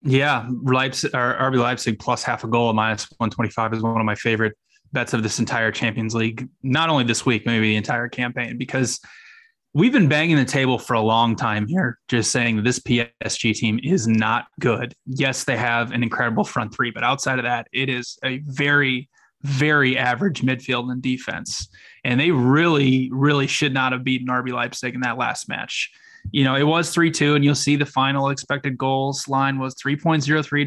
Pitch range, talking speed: 125-145 Hz, 190 wpm